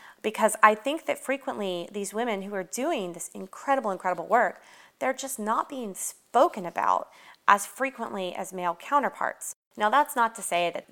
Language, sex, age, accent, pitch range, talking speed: English, female, 30-49, American, 175-215 Hz, 170 wpm